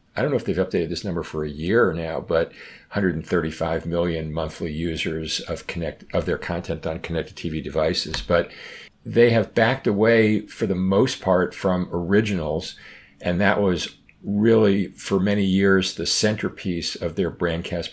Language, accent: English, American